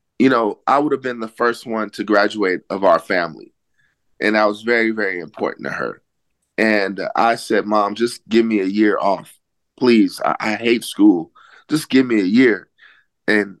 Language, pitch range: English, 105-120 Hz